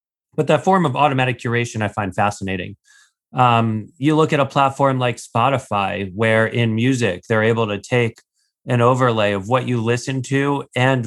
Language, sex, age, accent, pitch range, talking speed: English, male, 30-49, American, 110-130 Hz, 175 wpm